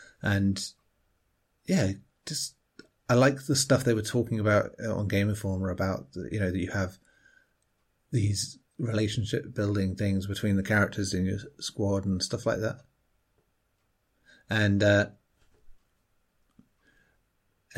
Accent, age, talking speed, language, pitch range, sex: British, 30-49, 120 wpm, English, 95-115 Hz, male